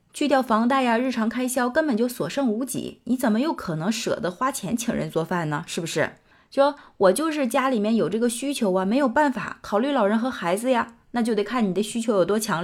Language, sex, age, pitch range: Chinese, female, 20-39, 180-245 Hz